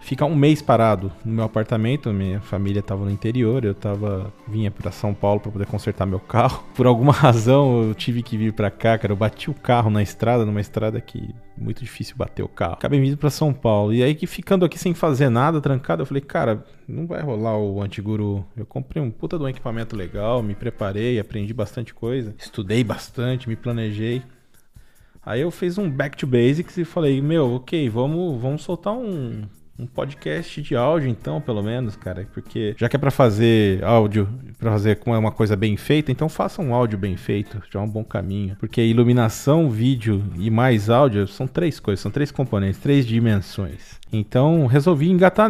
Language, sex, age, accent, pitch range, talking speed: Portuguese, male, 20-39, Brazilian, 110-145 Hz, 200 wpm